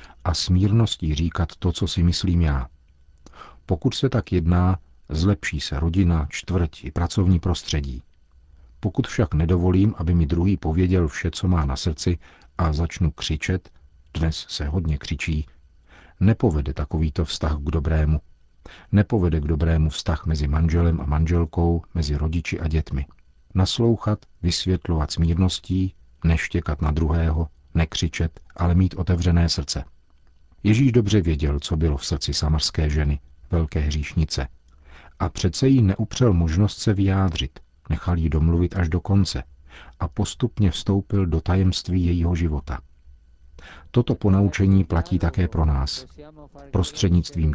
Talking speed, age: 130 wpm, 50-69